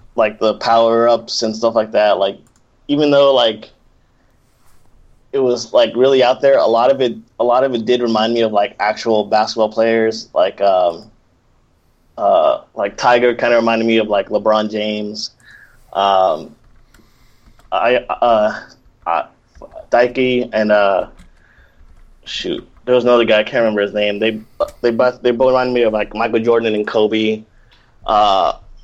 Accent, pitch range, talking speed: American, 110-125 Hz, 160 wpm